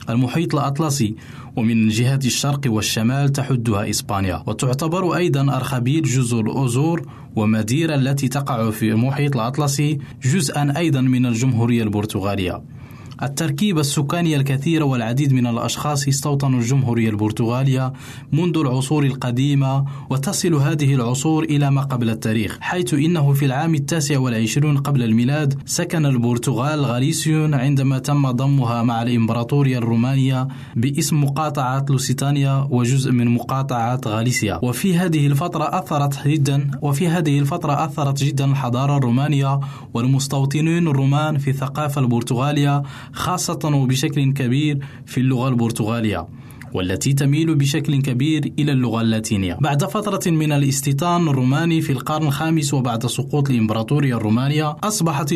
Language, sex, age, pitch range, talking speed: Arabic, male, 20-39, 125-145 Hz, 120 wpm